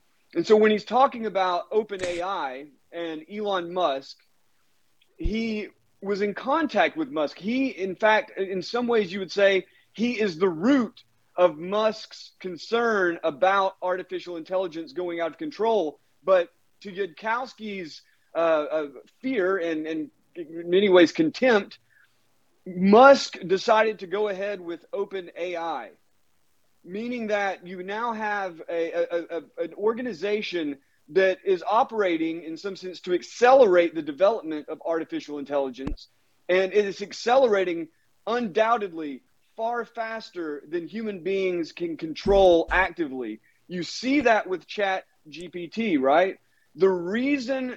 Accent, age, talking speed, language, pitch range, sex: American, 30-49, 130 wpm, English, 170-220 Hz, male